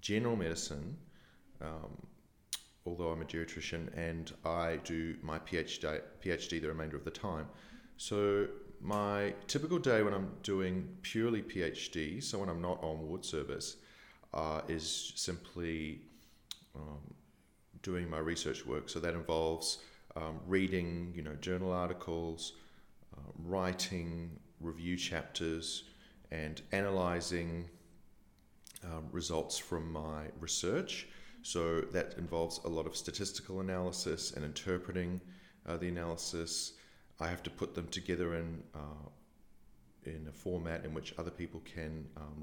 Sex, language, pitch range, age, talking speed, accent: male, English, 80-90 Hz, 40-59, 130 wpm, Australian